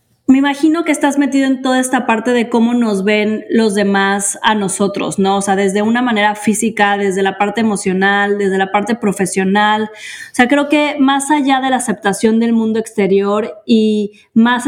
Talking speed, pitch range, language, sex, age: 190 wpm, 205-235 Hz, Spanish, female, 20-39